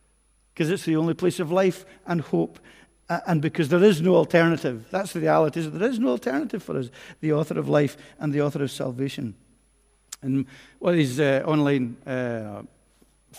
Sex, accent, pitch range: male, British, 135-185 Hz